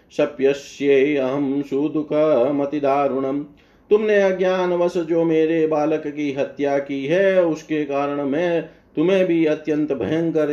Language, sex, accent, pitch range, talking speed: Hindi, male, native, 140-155 Hz, 115 wpm